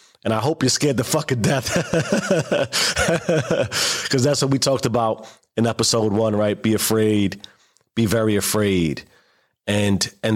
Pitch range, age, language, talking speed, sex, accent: 100-120 Hz, 30-49, English, 145 wpm, male, American